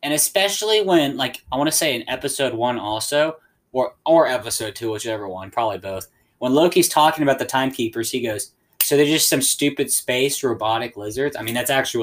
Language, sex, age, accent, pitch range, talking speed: English, male, 10-29, American, 115-150 Hz, 200 wpm